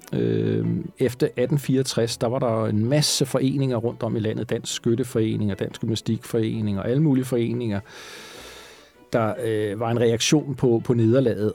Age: 40-59